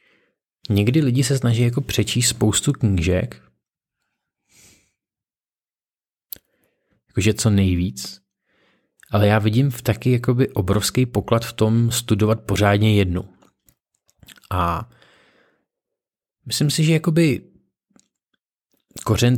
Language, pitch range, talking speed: Czech, 100-120 Hz, 85 wpm